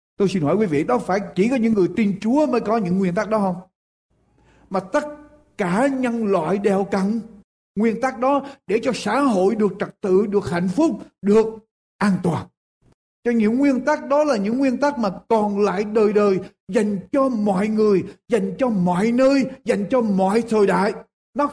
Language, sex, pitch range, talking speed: Vietnamese, male, 180-235 Hz, 200 wpm